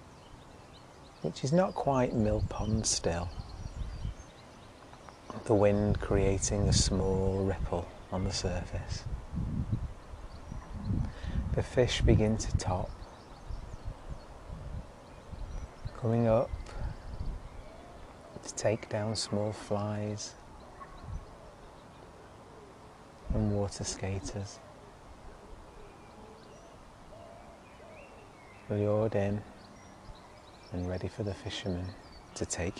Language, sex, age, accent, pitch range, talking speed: English, male, 30-49, British, 90-110 Hz, 70 wpm